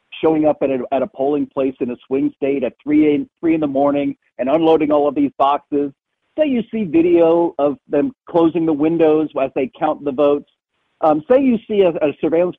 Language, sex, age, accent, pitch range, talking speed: English, male, 50-69, American, 150-210 Hz, 210 wpm